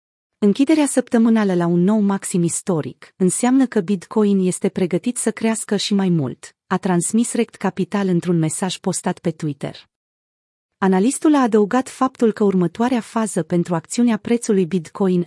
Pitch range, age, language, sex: 180-225 Hz, 30-49, Romanian, female